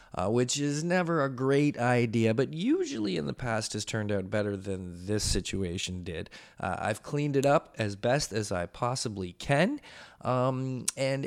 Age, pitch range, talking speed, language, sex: 20-39, 95-125 Hz, 175 wpm, English, male